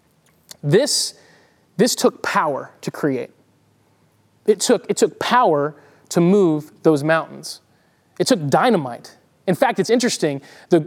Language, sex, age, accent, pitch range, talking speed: English, male, 30-49, American, 160-210 Hz, 120 wpm